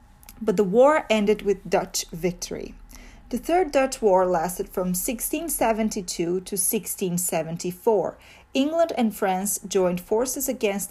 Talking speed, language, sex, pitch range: 120 wpm, English, female, 185-240 Hz